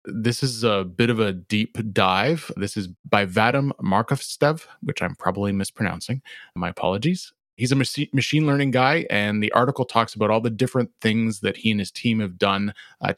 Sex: male